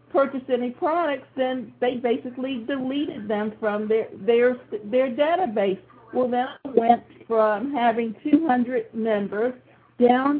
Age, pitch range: 50-69, 225-260 Hz